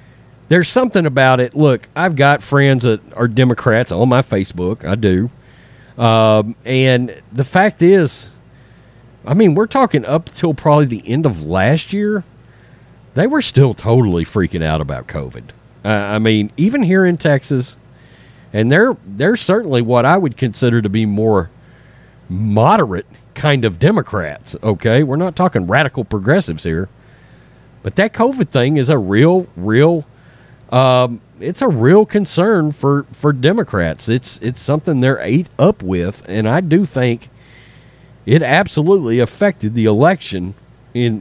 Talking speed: 150 wpm